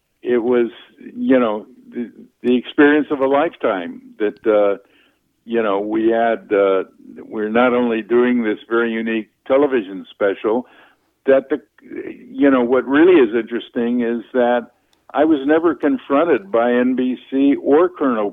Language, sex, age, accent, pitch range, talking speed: English, male, 60-79, American, 120-150 Hz, 145 wpm